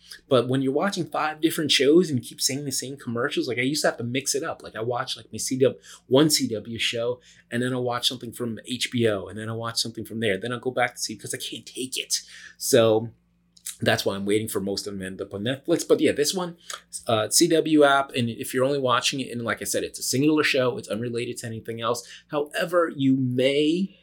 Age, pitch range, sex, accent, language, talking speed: 30-49, 110-140 Hz, male, American, English, 250 wpm